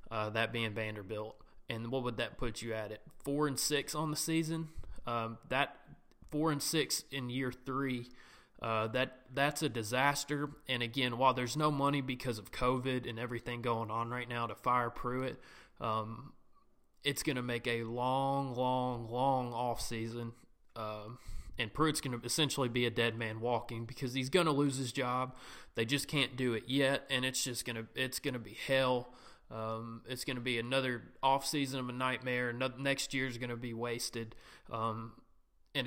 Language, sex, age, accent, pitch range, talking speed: English, male, 20-39, American, 120-140 Hz, 190 wpm